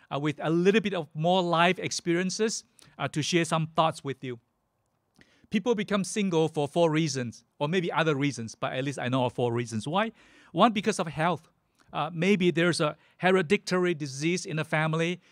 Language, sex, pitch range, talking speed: English, male, 150-185 Hz, 190 wpm